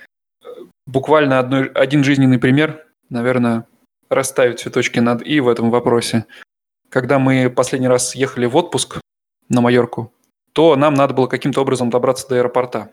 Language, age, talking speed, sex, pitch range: Russian, 20-39, 140 wpm, male, 125-145 Hz